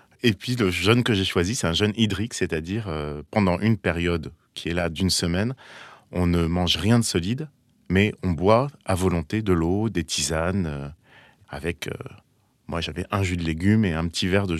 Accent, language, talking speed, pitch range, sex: French, French, 205 wpm, 85-110 Hz, male